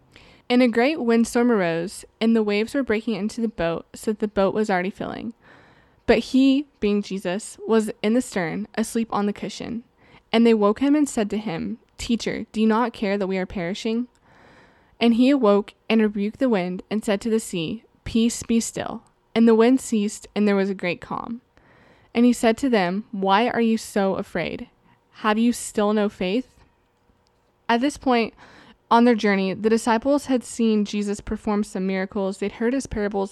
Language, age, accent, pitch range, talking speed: English, 20-39, American, 205-235 Hz, 195 wpm